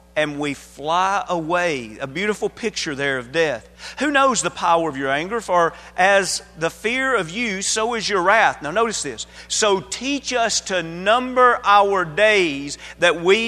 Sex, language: male, English